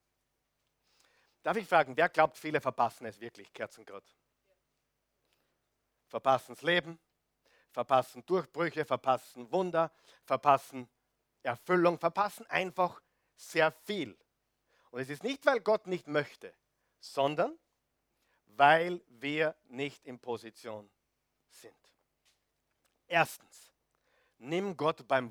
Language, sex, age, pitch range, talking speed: German, male, 50-69, 135-190 Hz, 100 wpm